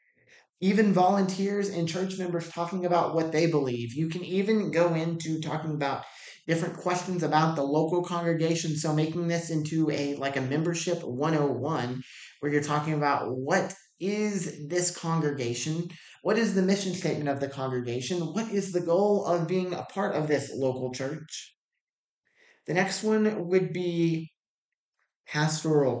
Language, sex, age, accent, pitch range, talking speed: English, male, 30-49, American, 145-180 Hz, 150 wpm